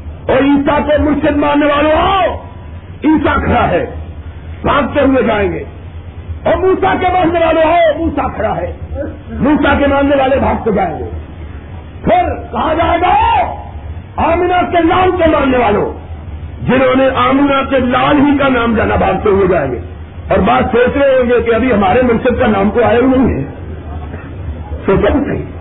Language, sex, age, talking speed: Urdu, male, 50-69, 170 wpm